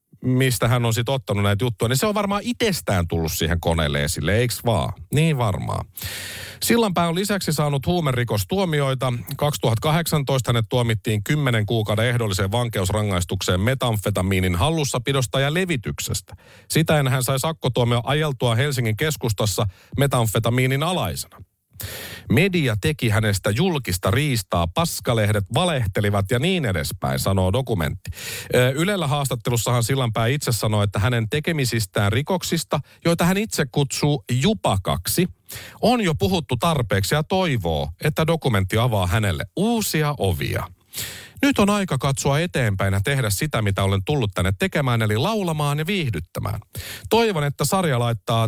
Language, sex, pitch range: Finnish, male, 105-150 Hz